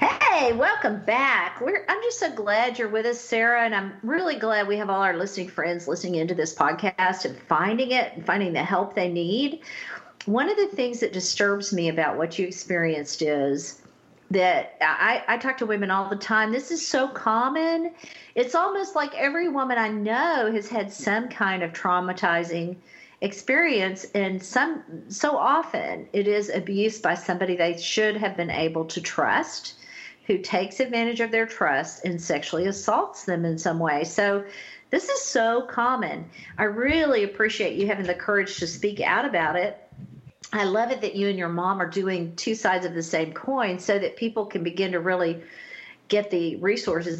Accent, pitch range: American, 180-235 Hz